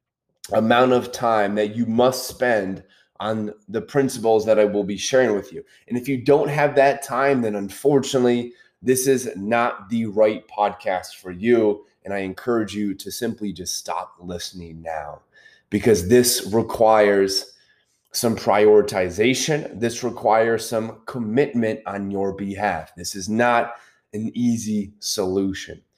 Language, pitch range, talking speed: English, 105-130 Hz, 145 wpm